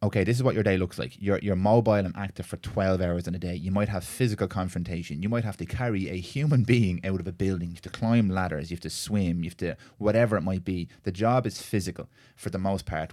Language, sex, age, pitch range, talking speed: English, male, 20-39, 90-110 Hz, 265 wpm